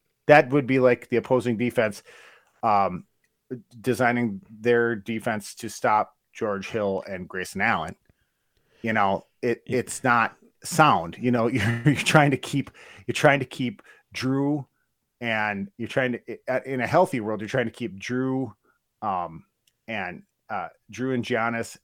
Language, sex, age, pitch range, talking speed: English, male, 30-49, 110-135 Hz, 150 wpm